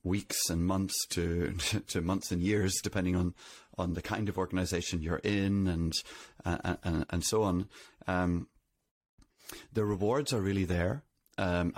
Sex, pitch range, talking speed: male, 90-105 Hz, 145 wpm